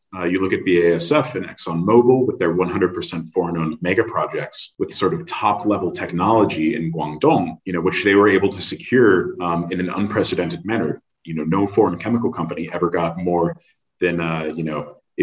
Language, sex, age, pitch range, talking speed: English, male, 30-49, 85-100 Hz, 185 wpm